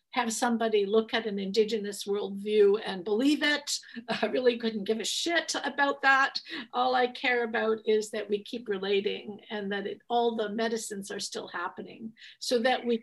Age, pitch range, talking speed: 50-69, 210-245 Hz, 175 wpm